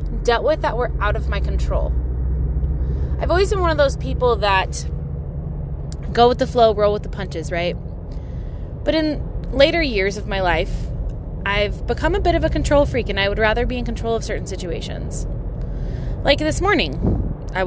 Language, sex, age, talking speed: English, female, 20-39, 185 wpm